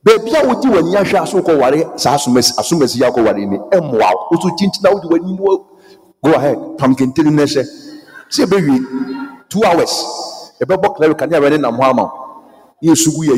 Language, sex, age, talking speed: English, male, 50-69, 65 wpm